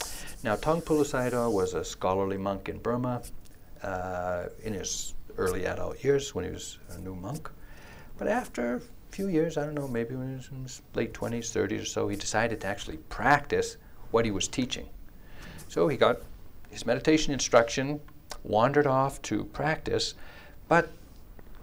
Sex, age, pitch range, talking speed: male, 60-79, 95-130 Hz, 165 wpm